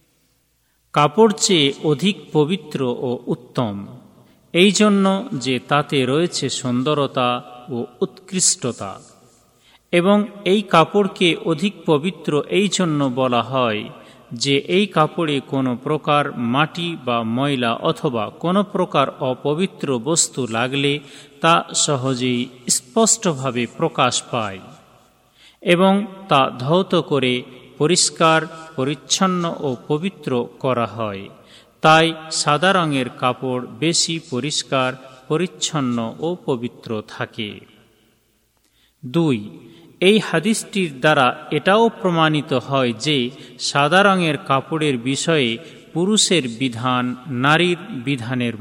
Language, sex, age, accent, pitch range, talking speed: Bengali, male, 40-59, native, 125-175 Hz, 95 wpm